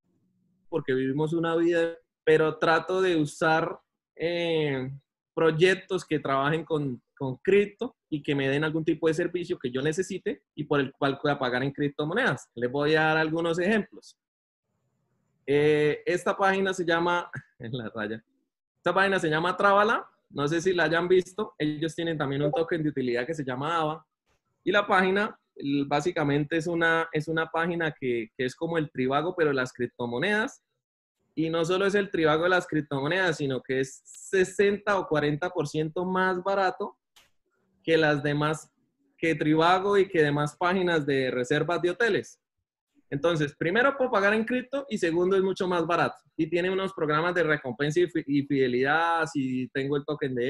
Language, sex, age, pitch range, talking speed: Spanish, male, 20-39, 145-180 Hz, 170 wpm